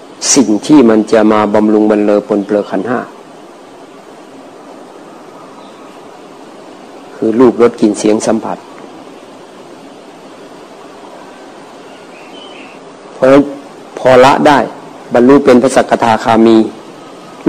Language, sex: Thai, male